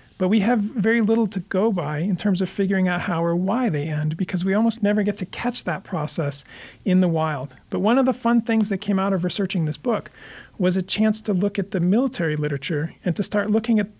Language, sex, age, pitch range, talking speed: English, male, 40-59, 160-195 Hz, 245 wpm